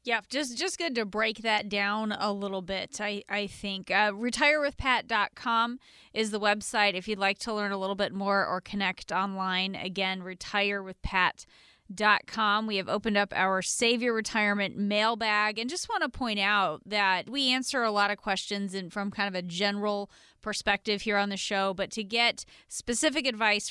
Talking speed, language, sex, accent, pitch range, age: 195 wpm, English, female, American, 195-225 Hz, 20-39